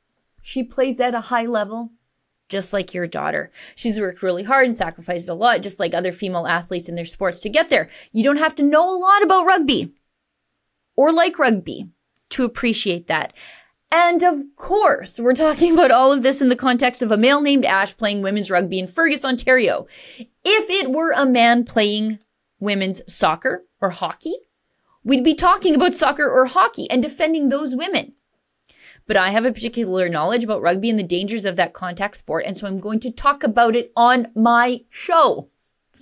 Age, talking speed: 30-49, 190 wpm